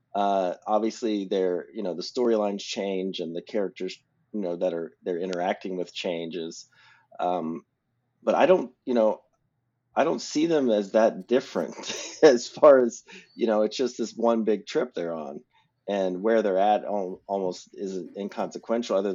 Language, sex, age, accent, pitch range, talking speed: English, male, 30-49, American, 90-115 Hz, 170 wpm